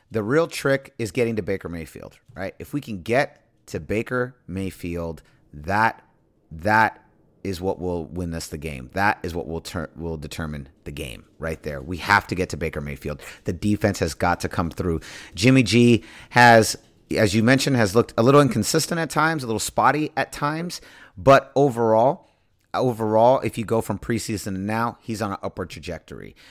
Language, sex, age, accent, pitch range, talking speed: English, male, 30-49, American, 90-125 Hz, 190 wpm